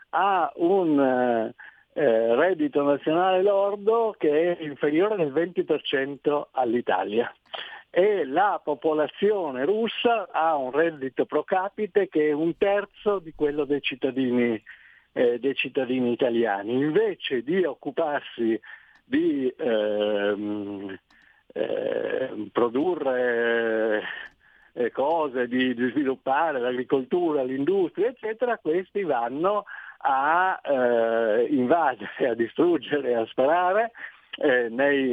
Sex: male